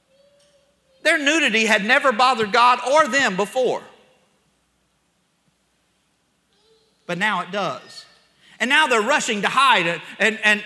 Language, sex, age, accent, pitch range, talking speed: English, male, 50-69, American, 205-280 Hz, 125 wpm